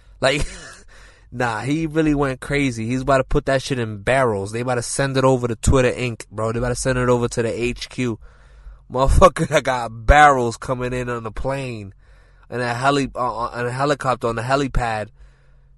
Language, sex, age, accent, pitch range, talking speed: English, male, 20-39, American, 105-135 Hz, 200 wpm